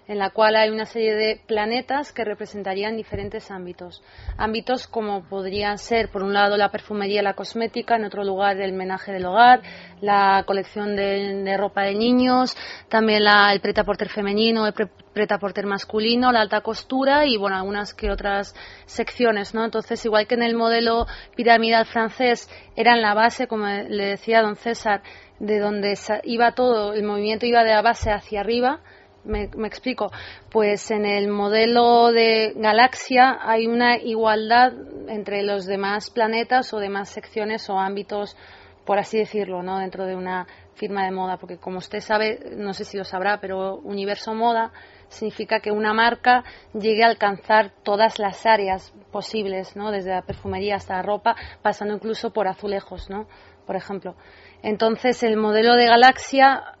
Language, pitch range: Spanish, 200-230 Hz